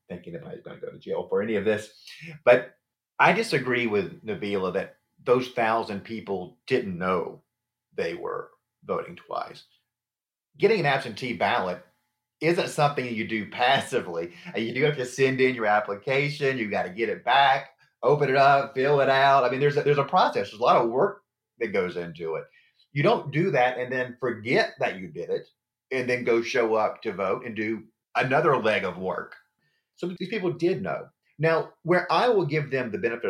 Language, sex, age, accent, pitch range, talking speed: English, male, 30-49, American, 115-160 Hz, 195 wpm